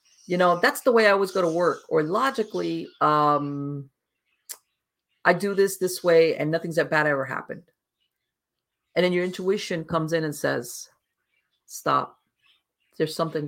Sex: female